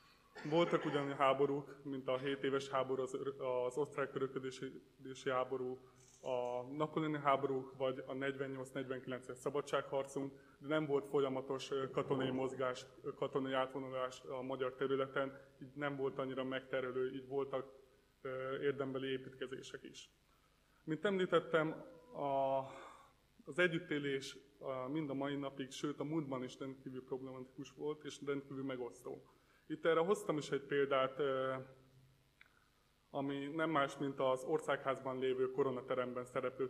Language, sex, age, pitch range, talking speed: Hungarian, male, 20-39, 130-140 Hz, 120 wpm